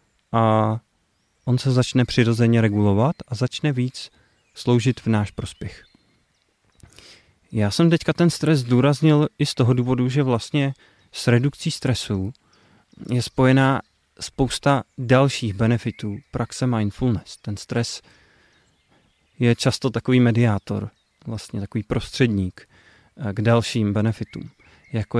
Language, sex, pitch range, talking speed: Czech, male, 105-125 Hz, 115 wpm